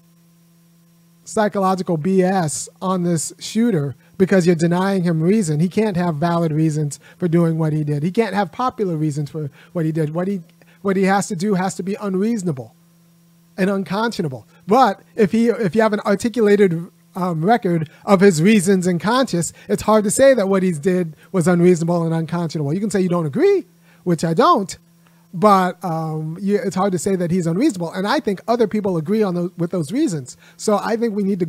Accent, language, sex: American, English, male